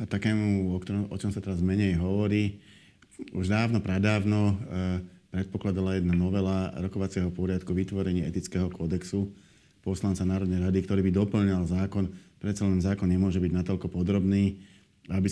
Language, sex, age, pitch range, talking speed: Slovak, male, 30-49, 90-100 Hz, 145 wpm